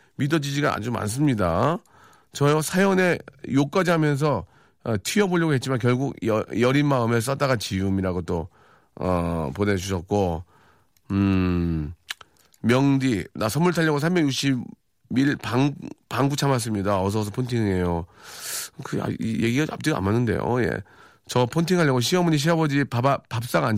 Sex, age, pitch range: male, 40-59, 100-145 Hz